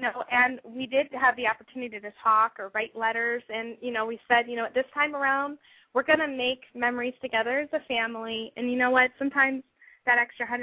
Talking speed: 220 wpm